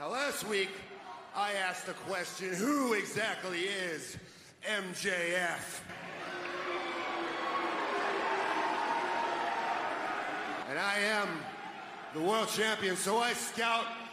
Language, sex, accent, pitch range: English, male, American, 180-205 Hz